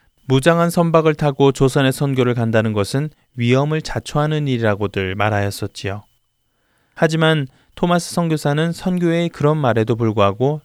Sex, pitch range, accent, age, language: male, 105-155 Hz, native, 20-39, Korean